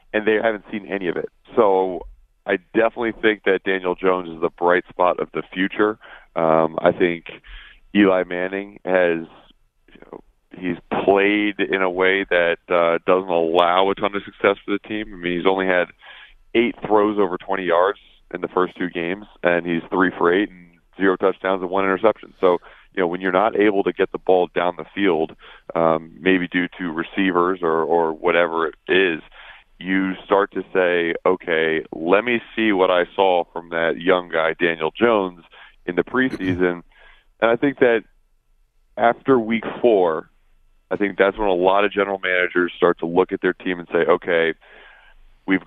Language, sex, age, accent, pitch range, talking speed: English, male, 40-59, American, 85-100 Hz, 185 wpm